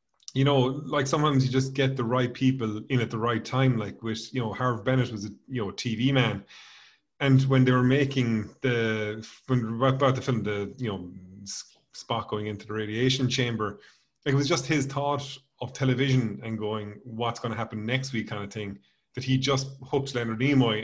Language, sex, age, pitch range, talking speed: English, male, 30-49, 110-135 Hz, 205 wpm